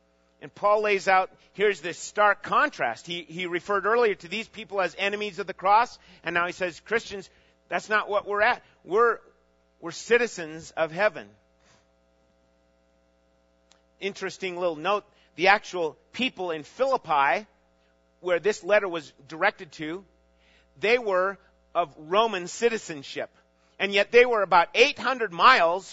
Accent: American